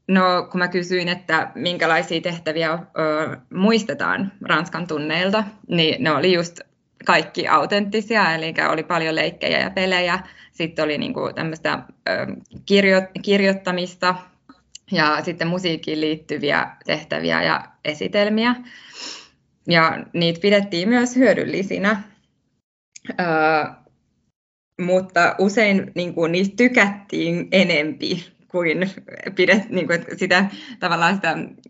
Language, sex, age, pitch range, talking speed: Finnish, female, 20-39, 155-195 Hz, 100 wpm